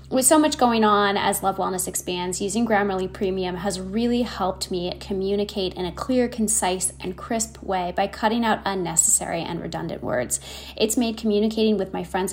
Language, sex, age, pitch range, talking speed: English, female, 10-29, 185-235 Hz, 180 wpm